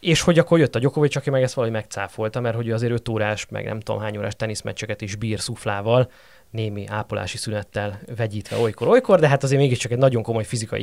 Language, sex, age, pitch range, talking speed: Hungarian, male, 20-39, 110-130 Hz, 215 wpm